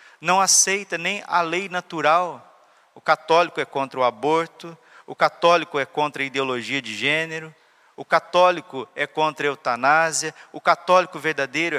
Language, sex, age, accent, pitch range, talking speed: Portuguese, male, 40-59, Brazilian, 150-175 Hz, 150 wpm